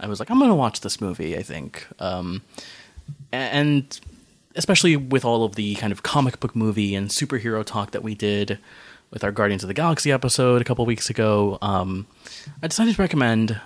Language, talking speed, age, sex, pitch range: English, 200 wpm, 20-39, male, 100-130 Hz